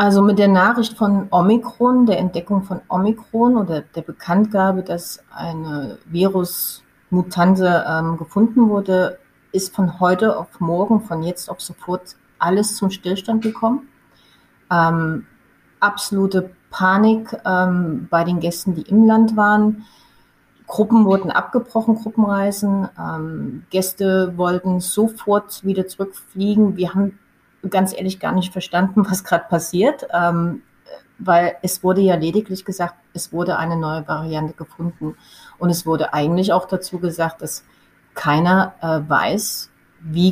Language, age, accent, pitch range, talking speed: German, 30-49, German, 170-200 Hz, 130 wpm